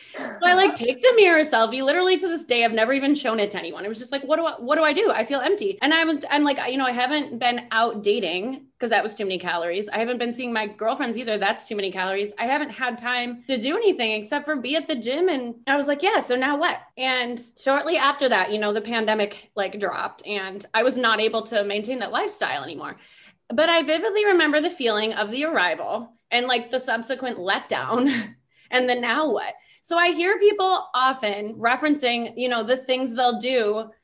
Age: 20-39